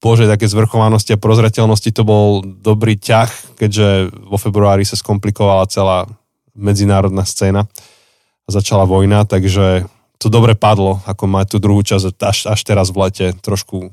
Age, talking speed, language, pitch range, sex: 20-39, 150 wpm, Slovak, 100-120 Hz, male